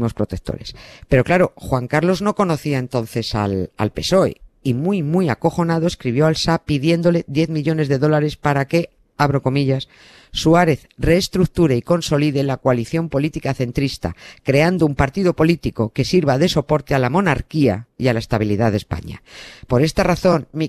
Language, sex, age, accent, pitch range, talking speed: Spanish, female, 50-69, Spanish, 125-165 Hz, 160 wpm